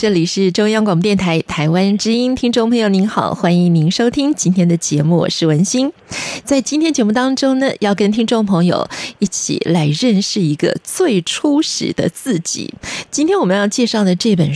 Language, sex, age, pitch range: Chinese, female, 20-39, 180-260 Hz